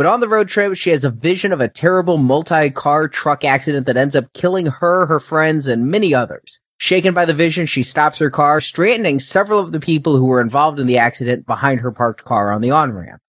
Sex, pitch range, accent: male, 130-175 Hz, American